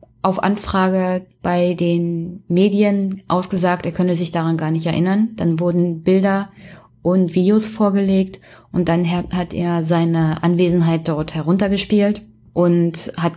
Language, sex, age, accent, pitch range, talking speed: German, female, 20-39, German, 165-195 Hz, 130 wpm